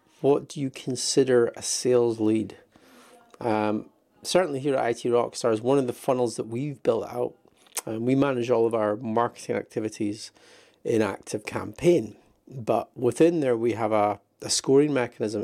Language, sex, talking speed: English, male, 165 wpm